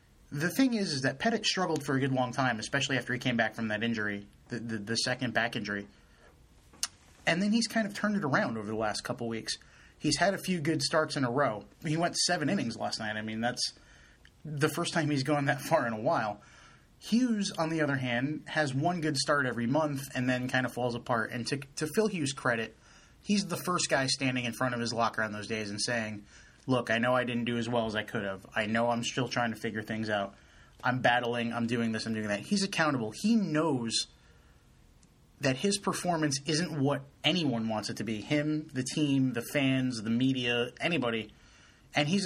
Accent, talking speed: American, 225 wpm